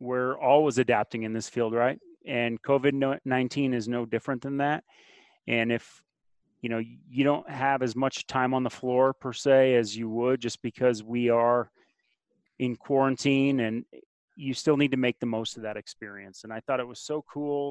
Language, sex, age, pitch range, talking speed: English, male, 30-49, 115-135 Hz, 190 wpm